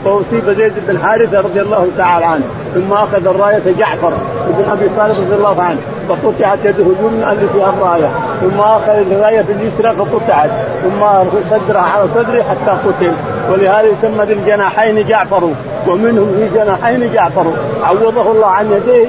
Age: 40-59